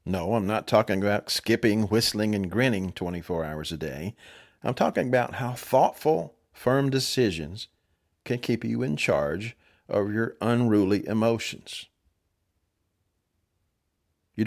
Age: 50-69